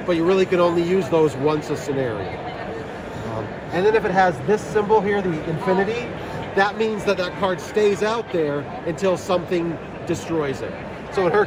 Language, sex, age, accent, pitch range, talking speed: English, male, 40-59, American, 155-195 Hz, 190 wpm